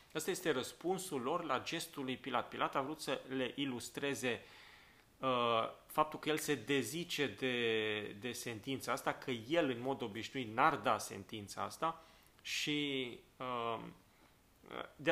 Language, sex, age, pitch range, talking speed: Romanian, male, 30-49, 115-140 Hz, 135 wpm